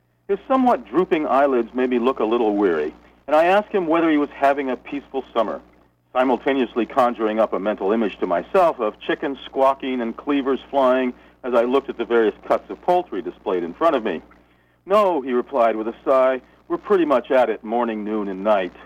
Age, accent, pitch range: 50-69, American, 105-150 Hz